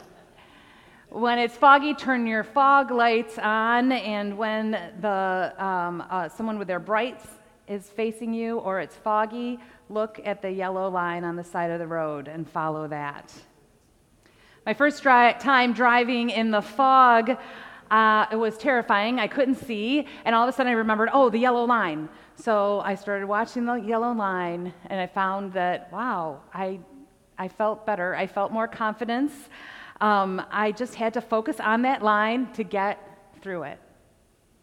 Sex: female